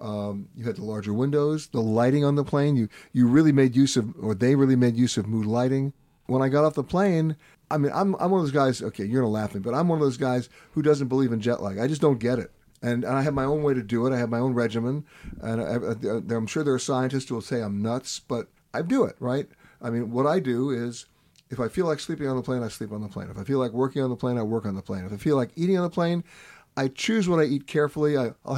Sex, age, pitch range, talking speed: male, 50-69, 120-155 Hz, 295 wpm